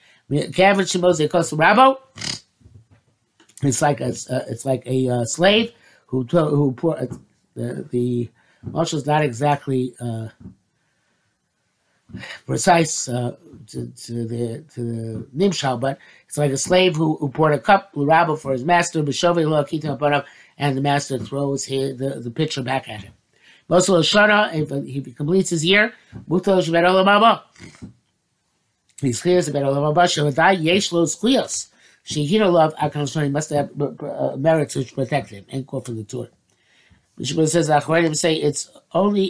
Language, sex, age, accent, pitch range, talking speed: English, male, 50-69, American, 130-165 Hz, 110 wpm